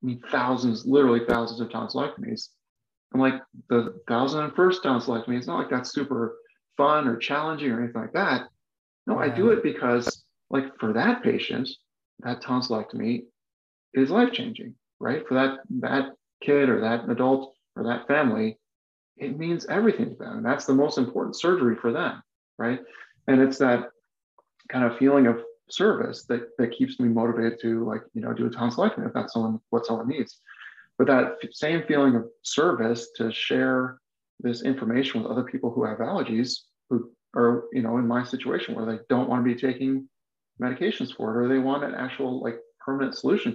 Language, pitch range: English, 115-140 Hz